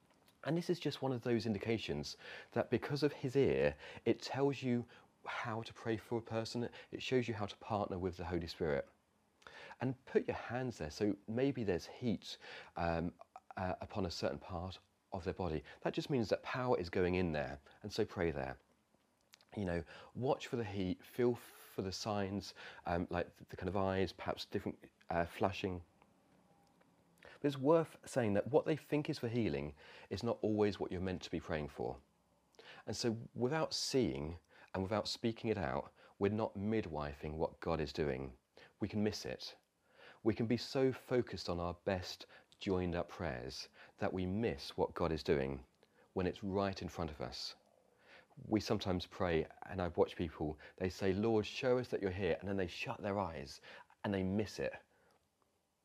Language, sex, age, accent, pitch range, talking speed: English, male, 30-49, British, 85-115 Hz, 185 wpm